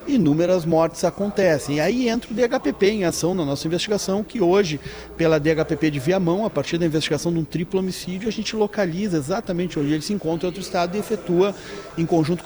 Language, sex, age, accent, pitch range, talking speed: Portuguese, male, 40-59, Brazilian, 165-210 Hz, 195 wpm